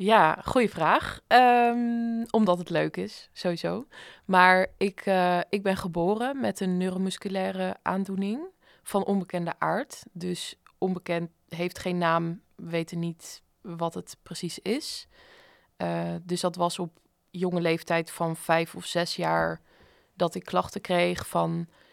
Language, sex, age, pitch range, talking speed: Dutch, female, 20-39, 165-185 Hz, 140 wpm